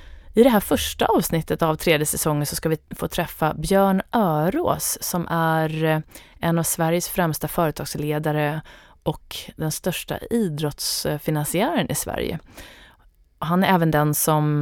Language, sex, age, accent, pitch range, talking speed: Swedish, female, 30-49, native, 155-190 Hz, 135 wpm